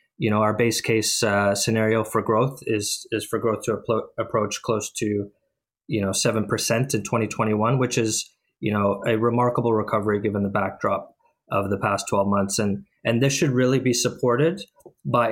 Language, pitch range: English, 105-120 Hz